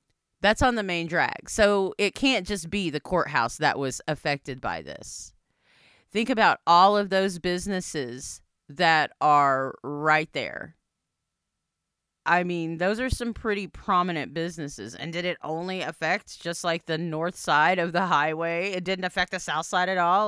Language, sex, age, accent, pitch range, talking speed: English, female, 30-49, American, 170-225 Hz, 165 wpm